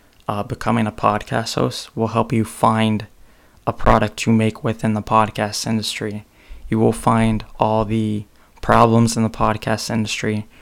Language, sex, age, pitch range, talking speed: English, male, 20-39, 105-115 Hz, 155 wpm